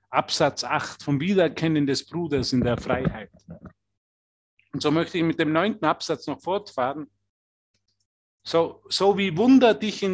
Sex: male